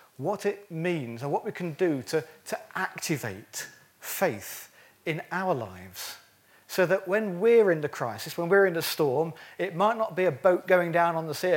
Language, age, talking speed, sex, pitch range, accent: English, 40-59, 195 wpm, male, 140-195 Hz, British